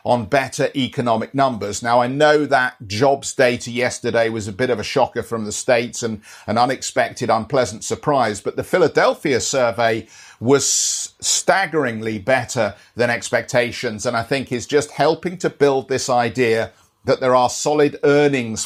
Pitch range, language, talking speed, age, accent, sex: 115-140 Hz, English, 160 wpm, 40-59, British, male